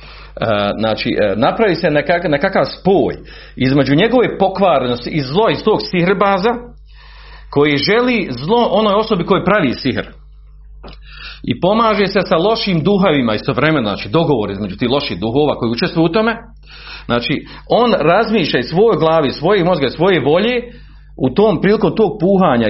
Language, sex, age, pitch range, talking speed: Croatian, male, 40-59, 135-205 Hz, 150 wpm